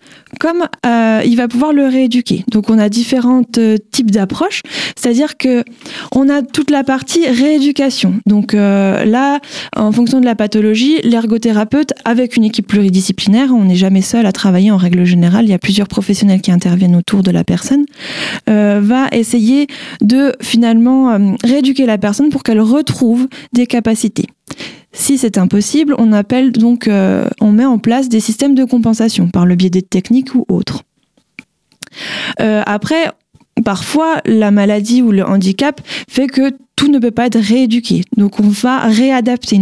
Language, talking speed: French, 170 wpm